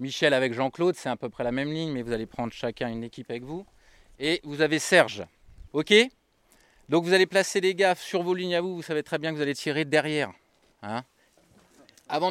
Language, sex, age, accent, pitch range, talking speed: French, male, 20-39, French, 130-165 Hz, 225 wpm